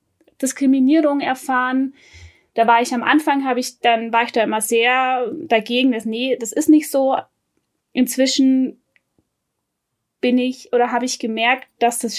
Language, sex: German, female